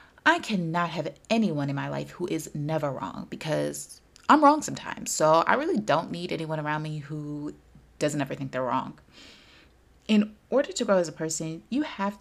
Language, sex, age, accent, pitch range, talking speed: English, female, 30-49, American, 155-215 Hz, 185 wpm